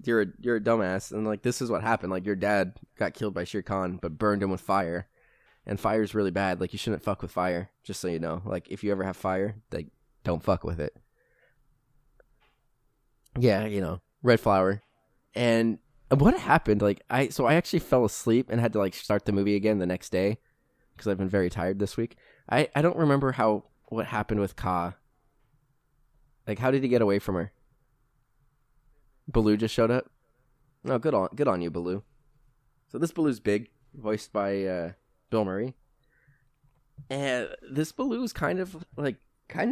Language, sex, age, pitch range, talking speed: English, male, 20-39, 100-135 Hz, 195 wpm